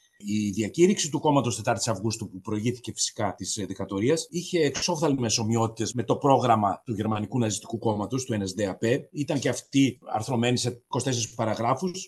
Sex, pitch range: male, 110-160 Hz